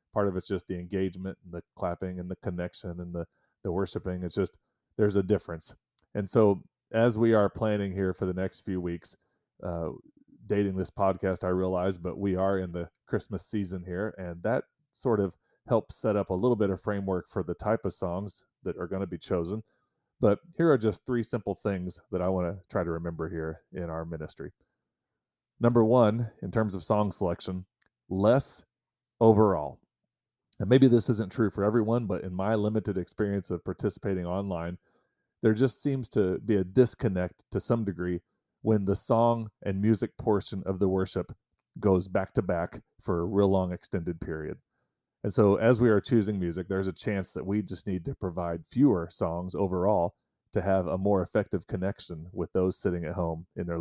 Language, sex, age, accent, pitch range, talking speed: English, male, 30-49, American, 90-110 Hz, 195 wpm